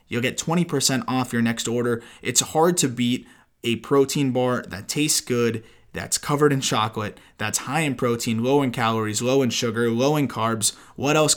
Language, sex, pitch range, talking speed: English, male, 110-140 Hz, 190 wpm